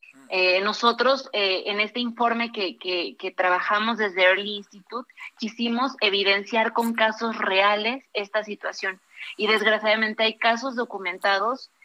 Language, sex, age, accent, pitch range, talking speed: Spanish, female, 30-49, Mexican, 195-235 Hz, 125 wpm